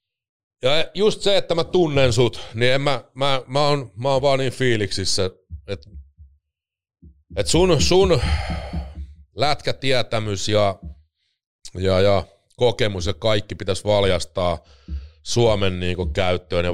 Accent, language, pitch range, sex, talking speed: native, Finnish, 85-110 Hz, male, 130 wpm